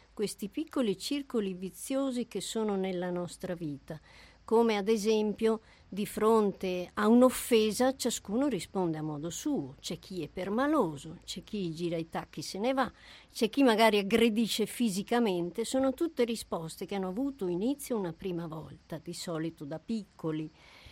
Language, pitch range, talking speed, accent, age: Italian, 175-230 Hz, 150 wpm, native, 50-69